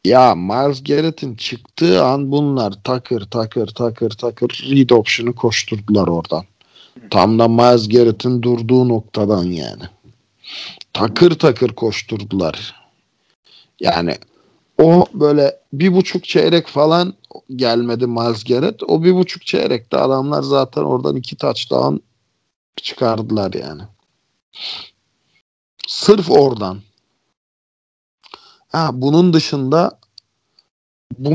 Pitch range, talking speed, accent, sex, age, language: 110-145 Hz, 90 wpm, native, male, 50-69, Turkish